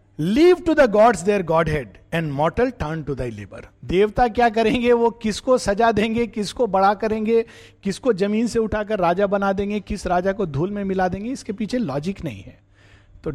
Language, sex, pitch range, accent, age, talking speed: Hindi, male, 140-210 Hz, native, 50-69, 210 wpm